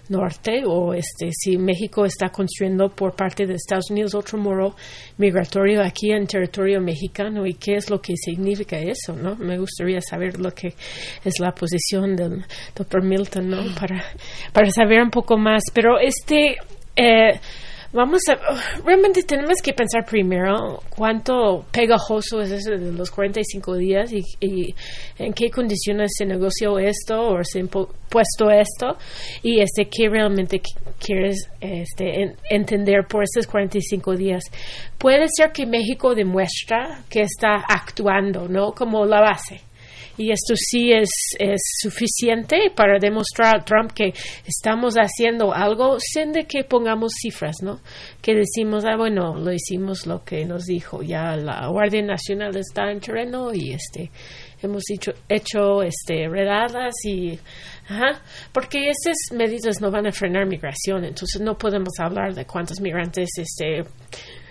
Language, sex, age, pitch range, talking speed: Spanish, female, 30-49, 185-220 Hz, 150 wpm